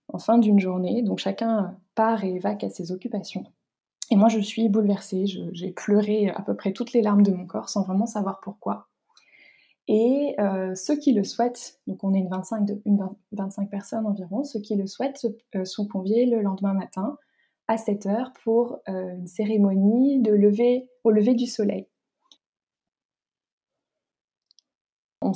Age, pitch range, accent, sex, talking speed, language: 20-39, 195-230 Hz, French, female, 175 wpm, French